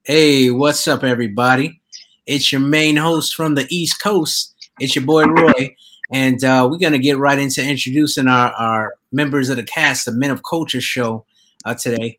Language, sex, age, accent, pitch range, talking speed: English, male, 30-49, American, 130-190 Hz, 180 wpm